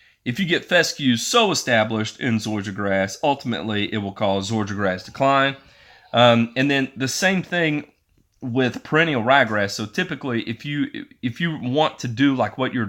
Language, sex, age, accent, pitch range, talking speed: English, male, 30-49, American, 105-130 Hz, 170 wpm